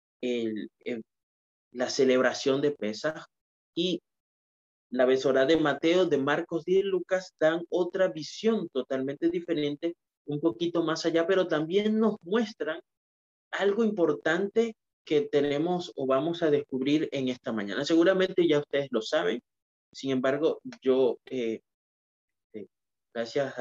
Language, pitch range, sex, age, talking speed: Spanish, 130-180 Hz, male, 30-49, 130 wpm